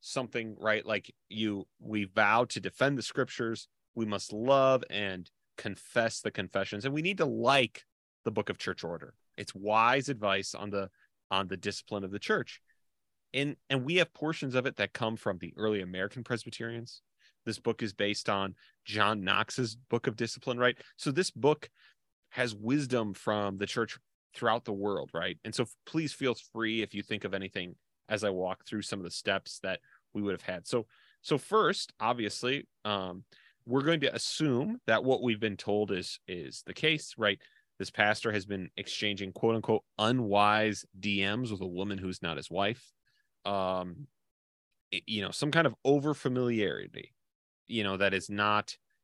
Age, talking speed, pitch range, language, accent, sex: 30-49, 180 wpm, 100-125 Hz, English, American, male